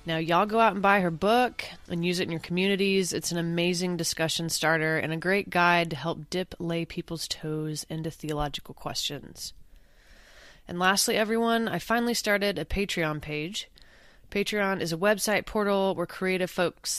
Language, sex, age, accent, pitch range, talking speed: English, female, 20-39, American, 160-185 Hz, 175 wpm